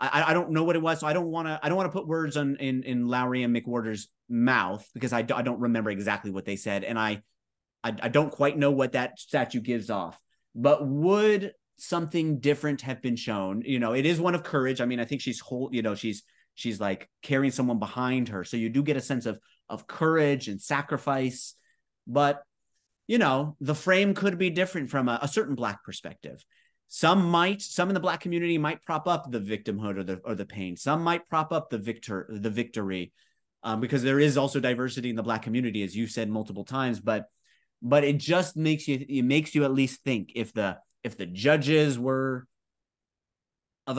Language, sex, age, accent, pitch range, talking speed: English, male, 30-49, American, 115-150 Hz, 215 wpm